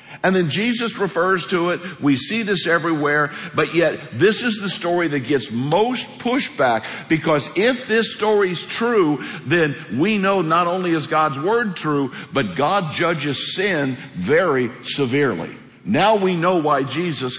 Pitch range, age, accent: 135-180 Hz, 60-79, American